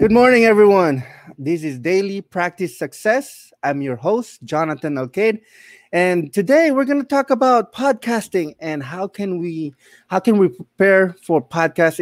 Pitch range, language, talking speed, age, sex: 140-185 Hz, English, 155 wpm, 20-39, male